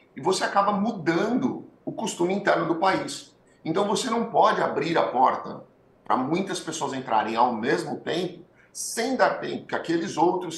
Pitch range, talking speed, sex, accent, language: 150-195 Hz, 165 wpm, male, Brazilian, Portuguese